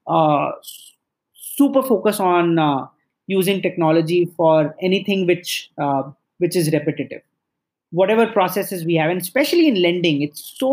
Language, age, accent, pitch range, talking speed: English, 30-49, Indian, 160-200 Hz, 135 wpm